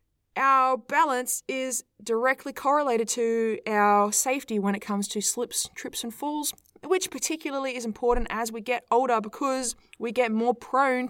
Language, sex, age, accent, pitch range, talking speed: English, female, 20-39, Australian, 230-280 Hz, 155 wpm